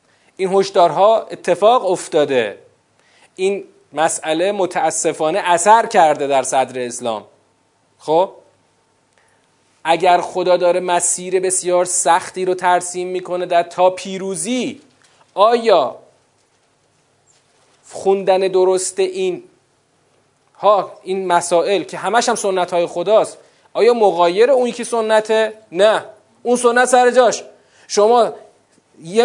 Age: 40-59